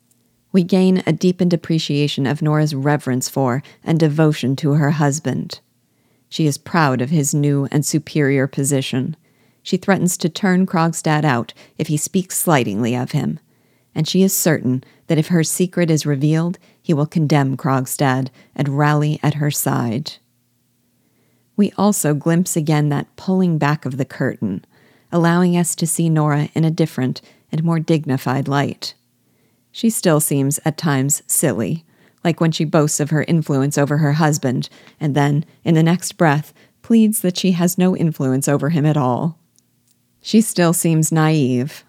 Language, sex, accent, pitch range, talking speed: English, female, American, 140-170 Hz, 160 wpm